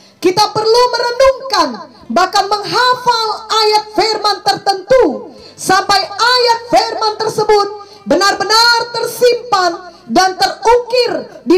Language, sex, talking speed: English, female, 90 wpm